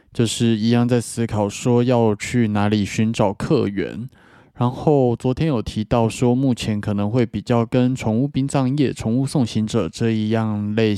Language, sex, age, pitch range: Chinese, male, 20-39, 105-125 Hz